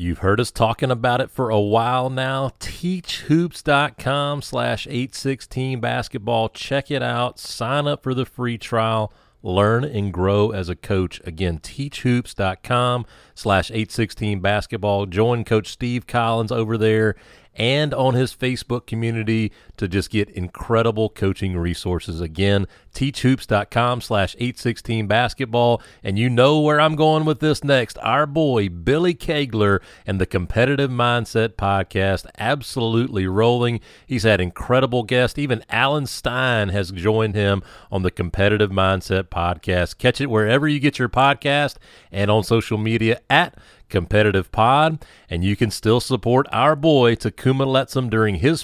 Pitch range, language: 95-125 Hz, English